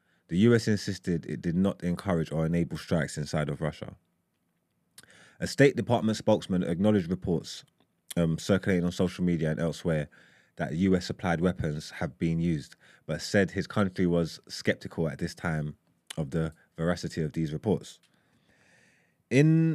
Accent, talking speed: British, 150 wpm